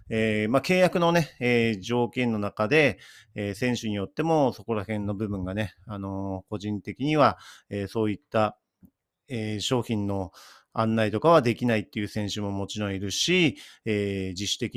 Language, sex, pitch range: Japanese, male, 100-130 Hz